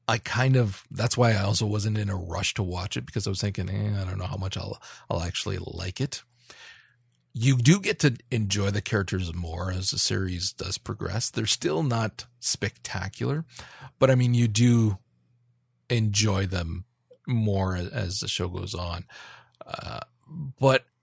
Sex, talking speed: male, 175 wpm